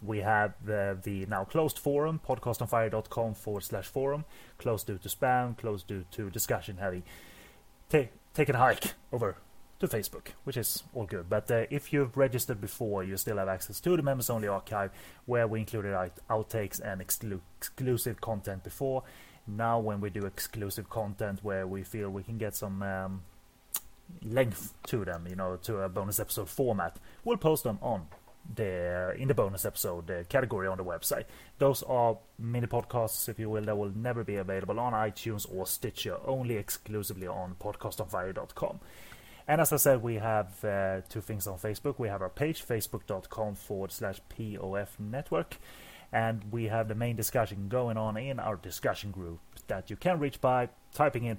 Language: English